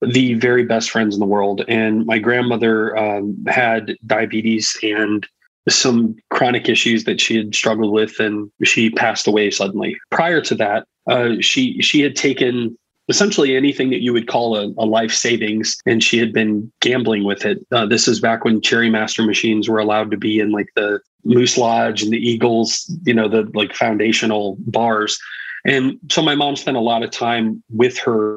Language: English